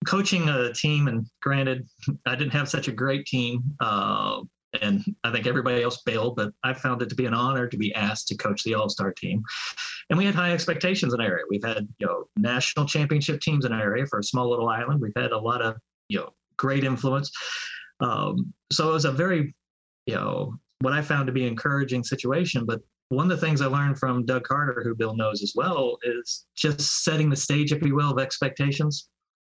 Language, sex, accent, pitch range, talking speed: English, male, American, 125-155 Hz, 220 wpm